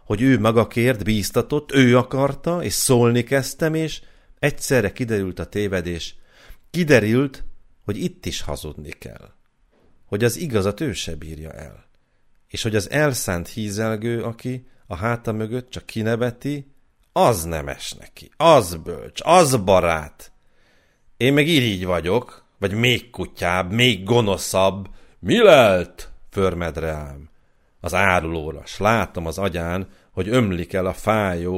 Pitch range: 85-125 Hz